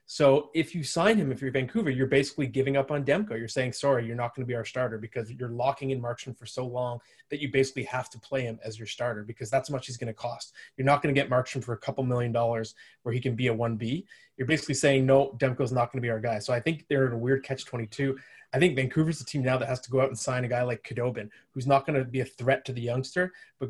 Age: 20-39